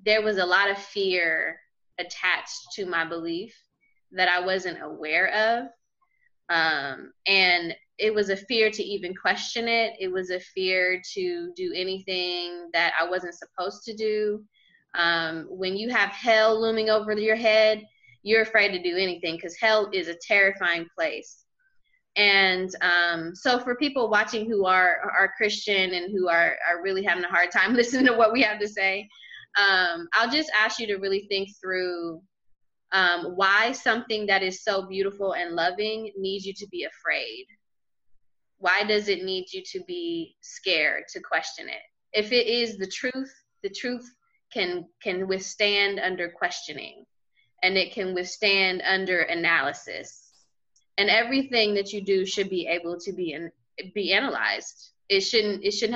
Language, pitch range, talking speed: English, 180-220 Hz, 165 wpm